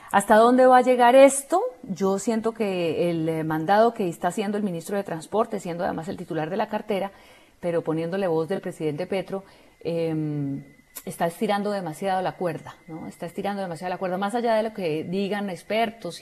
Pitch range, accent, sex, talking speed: 165-200 Hz, Colombian, female, 185 wpm